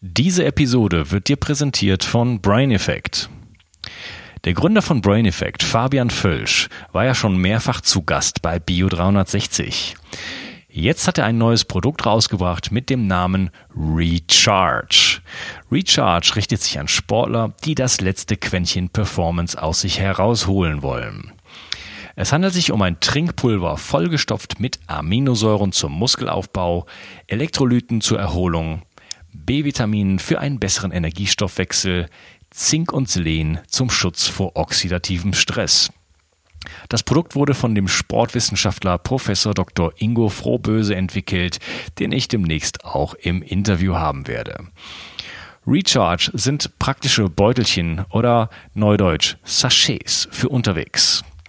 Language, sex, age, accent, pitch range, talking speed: German, male, 30-49, German, 90-120 Hz, 120 wpm